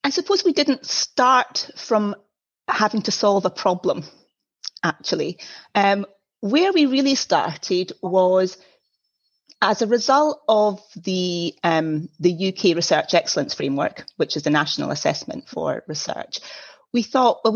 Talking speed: 130 wpm